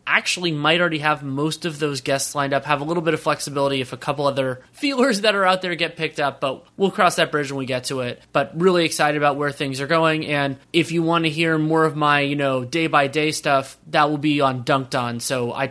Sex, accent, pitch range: male, American, 130-155 Hz